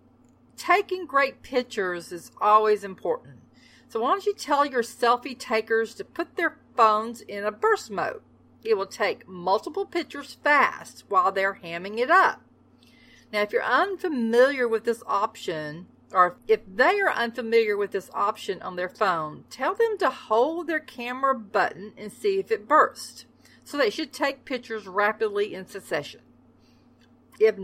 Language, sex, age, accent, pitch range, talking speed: English, female, 40-59, American, 200-270 Hz, 155 wpm